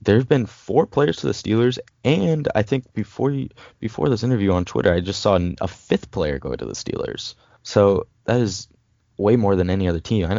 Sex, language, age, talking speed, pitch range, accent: male, English, 20-39, 215 wpm, 90-115 Hz, American